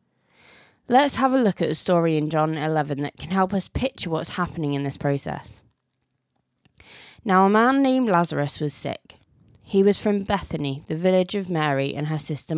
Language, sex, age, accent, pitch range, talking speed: English, female, 20-39, British, 150-195 Hz, 180 wpm